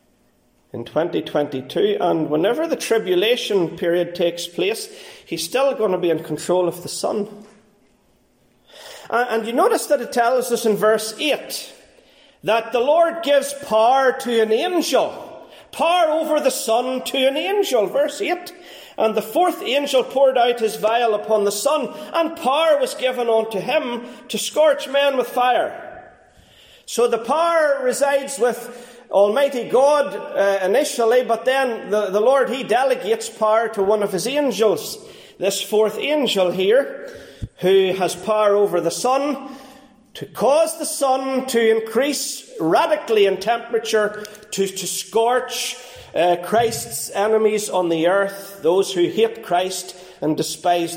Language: English